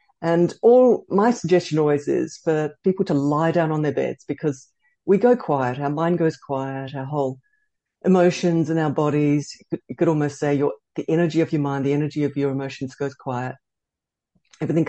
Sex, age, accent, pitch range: female, 60-79, Australian, 140-180 Hz